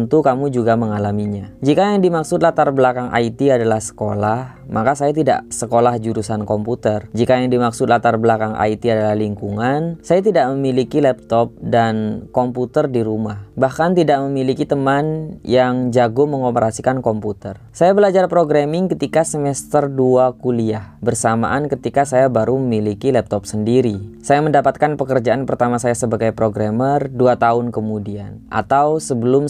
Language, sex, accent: Indonesian, female, native